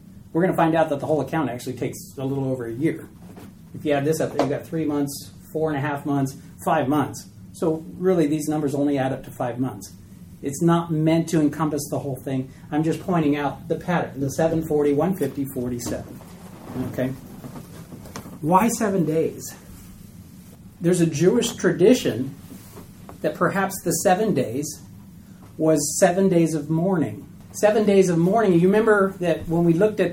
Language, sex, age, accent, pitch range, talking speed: English, male, 30-49, American, 145-185 Hz, 175 wpm